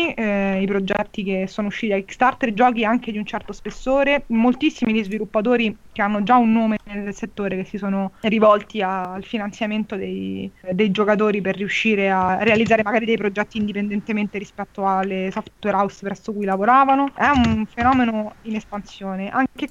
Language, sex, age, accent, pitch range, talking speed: Italian, female, 20-39, native, 200-230 Hz, 160 wpm